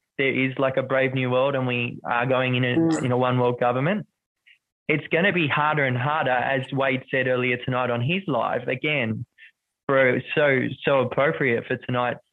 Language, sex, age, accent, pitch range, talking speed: English, male, 20-39, Australian, 125-150 Hz, 195 wpm